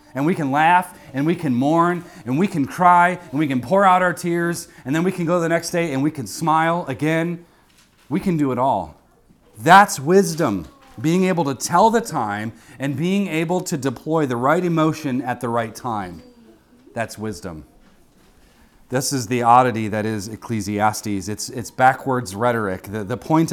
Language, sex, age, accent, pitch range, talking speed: English, male, 40-59, American, 115-160 Hz, 185 wpm